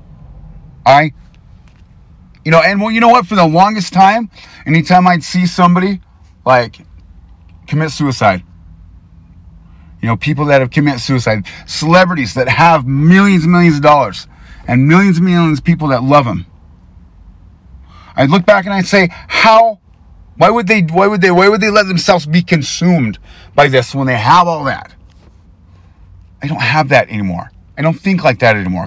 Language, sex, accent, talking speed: English, male, American, 170 wpm